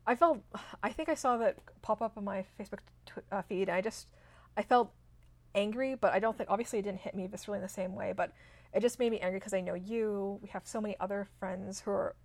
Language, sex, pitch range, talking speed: English, female, 175-220 Hz, 265 wpm